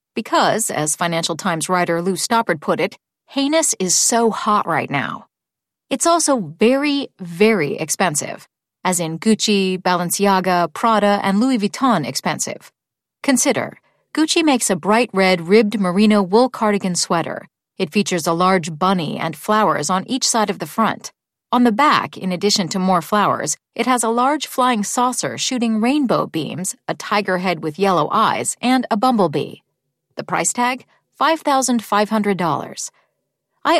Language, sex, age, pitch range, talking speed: English, female, 40-59, 185-255 Hz, 150 wpm